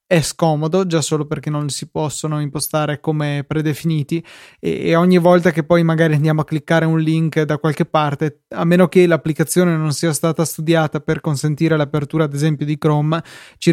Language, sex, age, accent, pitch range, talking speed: Italian, male, 20-39, native, 150-165 Hz, 180 wpm